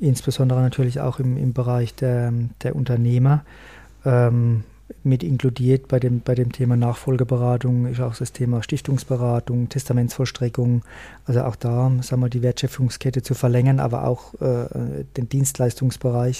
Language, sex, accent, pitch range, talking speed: German, male, German, 125-135 Hz, 140 wpm